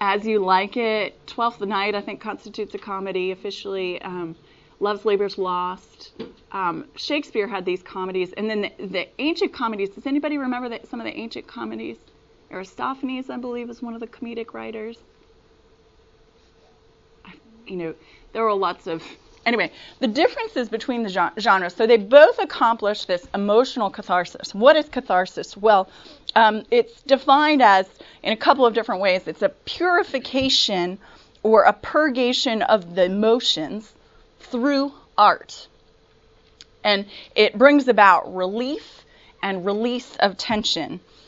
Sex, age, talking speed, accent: female, 30-49, 140 wpm, American